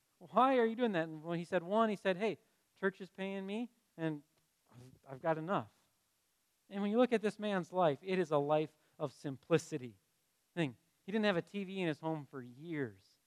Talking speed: 210 wpm